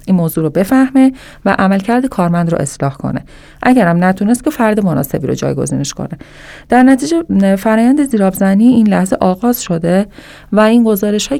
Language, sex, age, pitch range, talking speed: Persian, female, 30-49, 175-215 Hz, 160 wpm